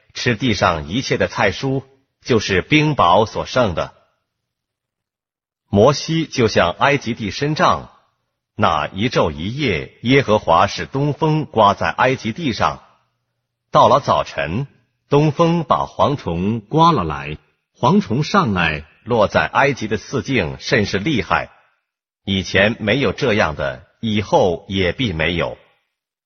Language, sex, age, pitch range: Korean, male, 50-69, 95-135 Hz